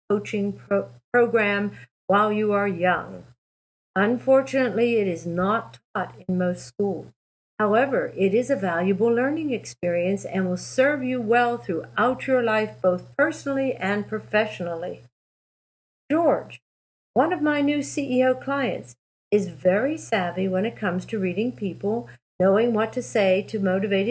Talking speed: 135 wpm